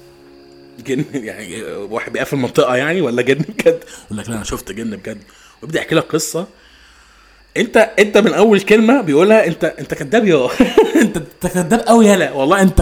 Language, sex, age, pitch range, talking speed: Arabic, male, 20-39, 105-165 Hz, 165 wpm